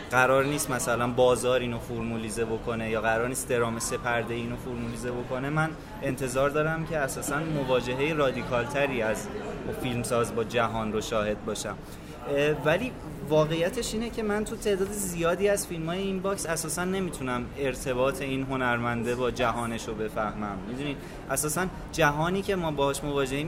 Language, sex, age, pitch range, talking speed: Persian, male, 20-39, 120-155 Hz, 150 wpm